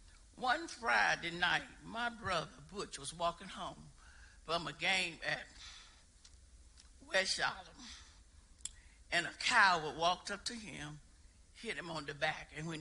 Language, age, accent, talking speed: English, 60-79, American, 135 wpm